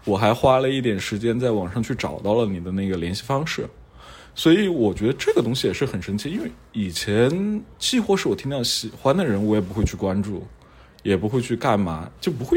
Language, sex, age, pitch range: Chinese, male, 20-39, 100-130 Hz